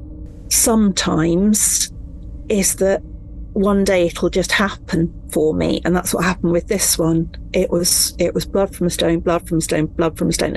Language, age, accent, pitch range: English, 40-59, British, 160-185 Hz